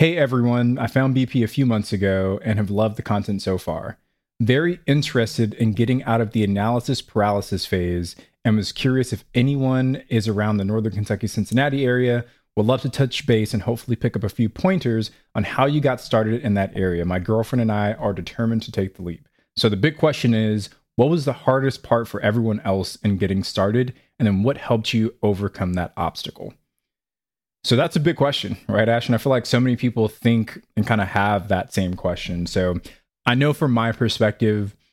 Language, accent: English, American